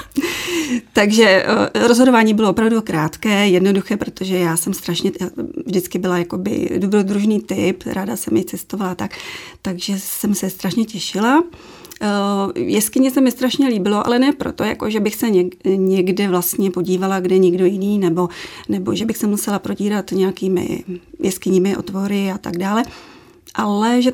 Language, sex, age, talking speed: Czech, female, 30-49, 145 wpm